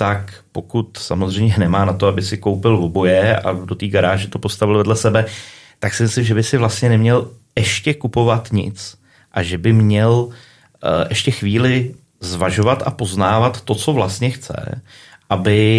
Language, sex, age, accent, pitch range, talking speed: Czech, male, 30-49, native, 95-120 Hz, 165 wpm